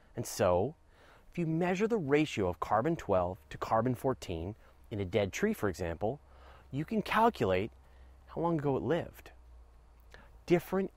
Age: 30-49